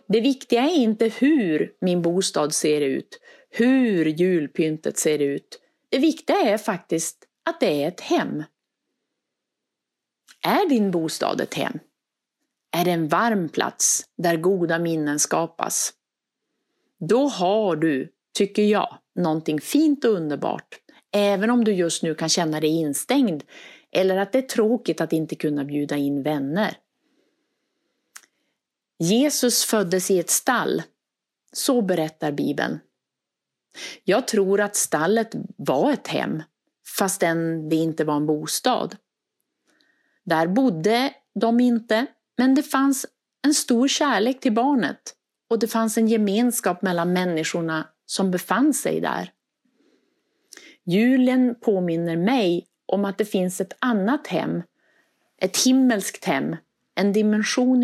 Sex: female